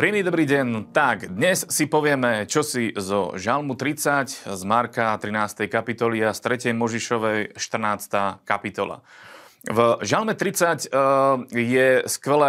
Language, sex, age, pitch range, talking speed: Slovak, male, 30-49, 105-135 Hz, 120 wpm